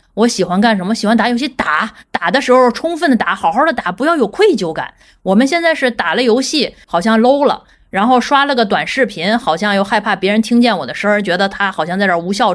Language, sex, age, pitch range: Chinese, female, 20-39, 195-250 Hz